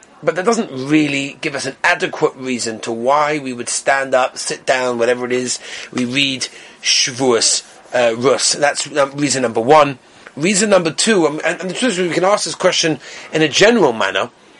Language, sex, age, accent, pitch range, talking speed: English, male, 30-49, British, 145-240 Hz, 195 wpm